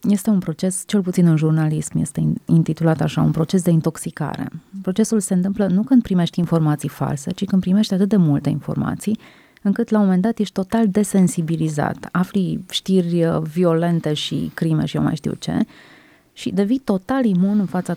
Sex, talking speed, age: female, 175 wpm, 30-49